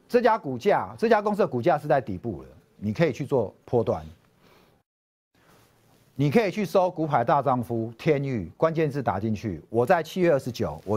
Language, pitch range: Chinese, 115-190 Hz